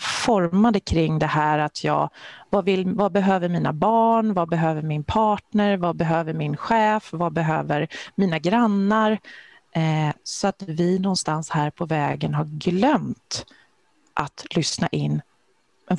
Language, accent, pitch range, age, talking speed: Swedish, native, 170-220 Hz, 30-49, 145 wpm